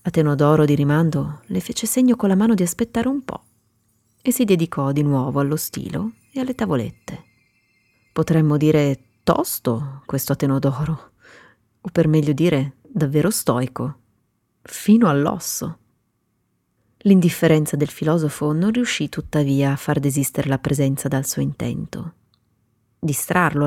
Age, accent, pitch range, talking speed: 30-49, native, 130-180 Hz, 130 wpm